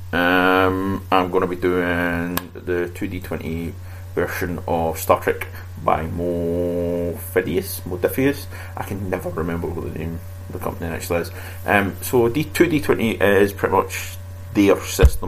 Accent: British